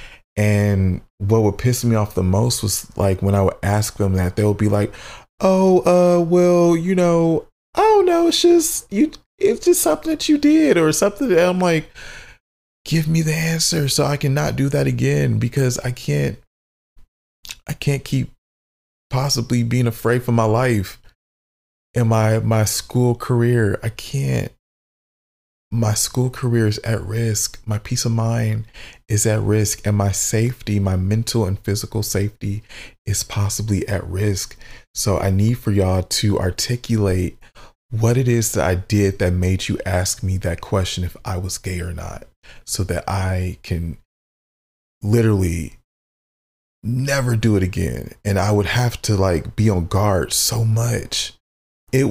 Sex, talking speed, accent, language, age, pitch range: male, 165 wpm, American, English, 20-39, 95-125 Hz